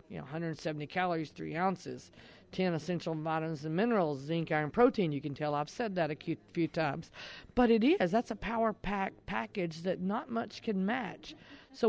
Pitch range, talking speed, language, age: 160-200 Hz, 190 wpm, English, 40-59